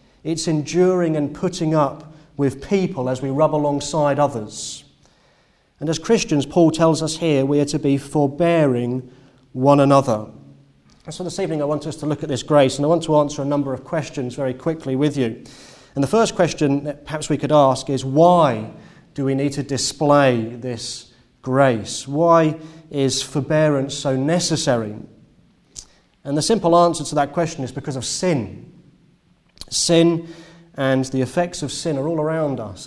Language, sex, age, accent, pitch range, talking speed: English, male, 30-49, British, 140-165 Hz, 170 wpm